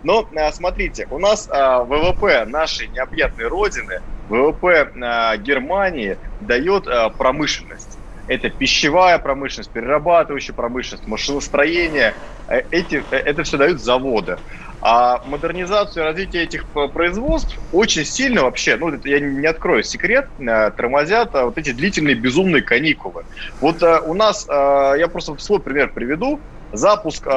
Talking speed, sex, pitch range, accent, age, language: 115 wpm, male, 140-200 Hz, native, 20-39, Russian